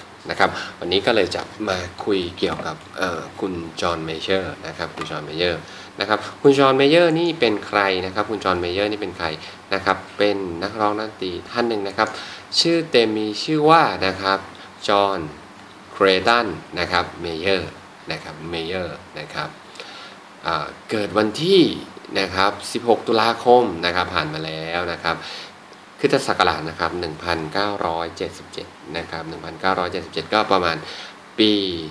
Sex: male